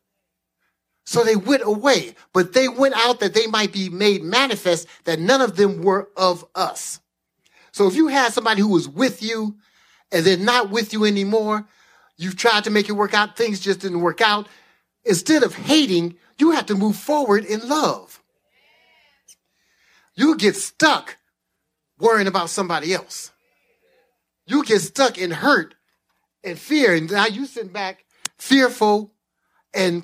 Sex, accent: male, American